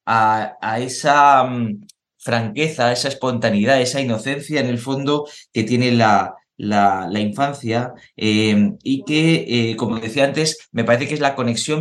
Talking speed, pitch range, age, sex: 170 wpm, 110-135 Hz, 20-39, male